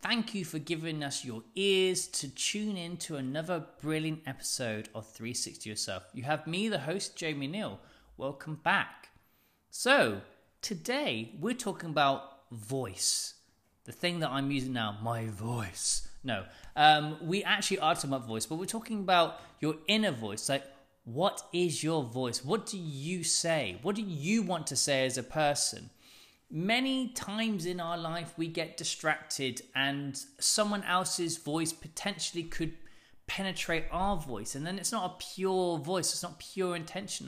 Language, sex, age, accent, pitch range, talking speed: English, male, 20-39, British, 135-190 Hz, 165 wpm